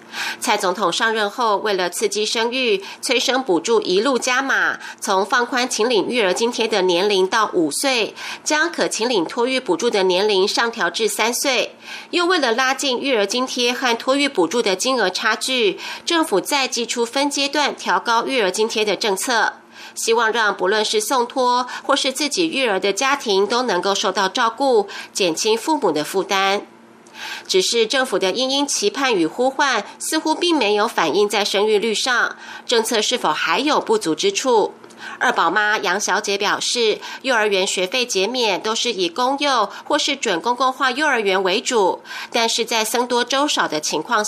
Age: 30-49